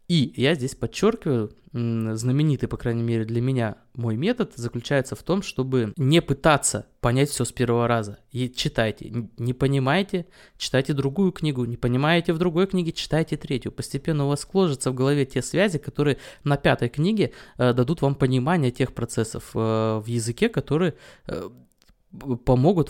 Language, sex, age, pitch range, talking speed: Russian, male, 20-39, 120-160 Hz, 150 wpm